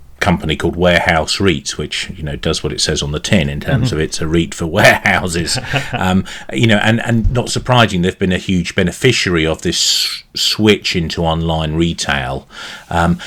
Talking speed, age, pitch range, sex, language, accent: 185 wpm, 40-59, 80-100 Hz, male, English, British